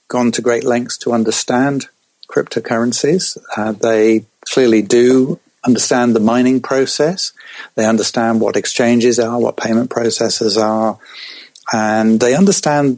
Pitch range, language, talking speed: 110-125 Hz, English, 125 wpm